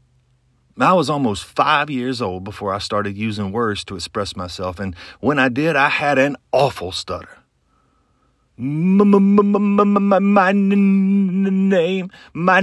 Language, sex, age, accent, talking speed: English, male, 40-59, American, 115 wpm